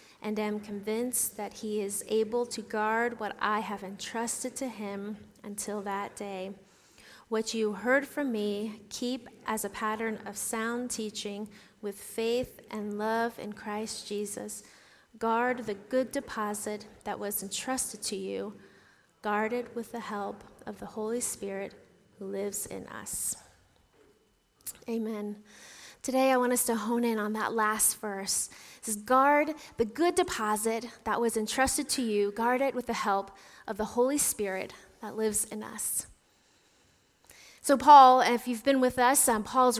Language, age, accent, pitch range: English, 30-49, American, 210-245 Hz